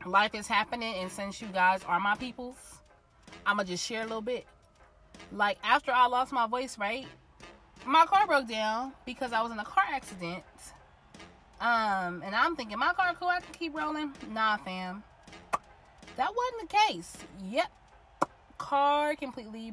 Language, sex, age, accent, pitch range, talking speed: English, female, 20-39, American, 180-250 Hz, 170 wpm